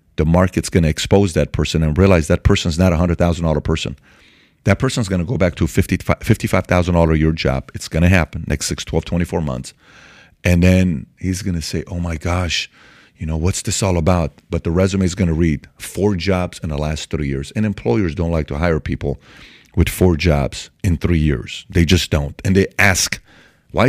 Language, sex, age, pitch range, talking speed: English, male, 40-59, 85-120 Hz, 200 wpm